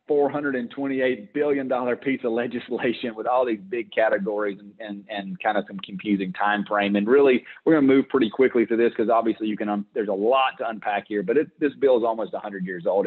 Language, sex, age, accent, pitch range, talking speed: English, male, 30-49, American, 100-120 Hz, 250 wpm